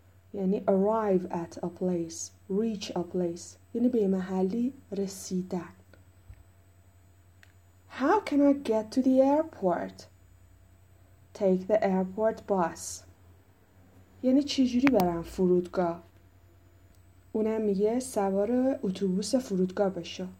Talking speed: 100 wpm